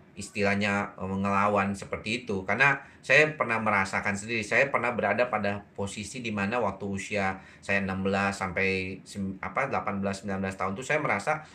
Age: 30-49